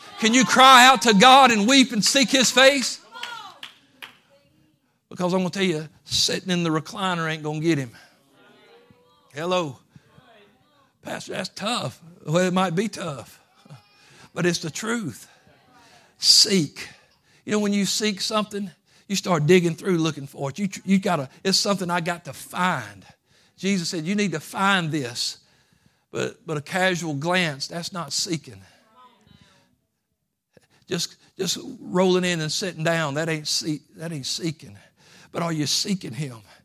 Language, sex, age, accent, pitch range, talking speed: English, male, 60-79, American, 150-190 Hz, 155 wpm